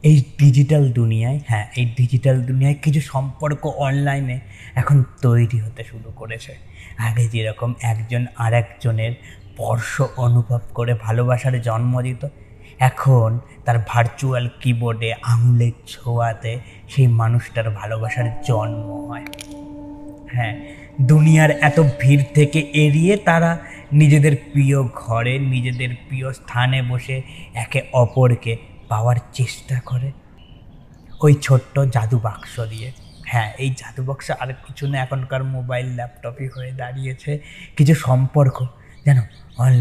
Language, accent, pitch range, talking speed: Bengali, native, 115-135 Hz, 105 wpm